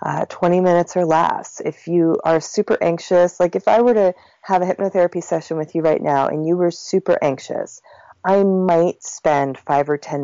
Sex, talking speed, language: female, 200 wpm, English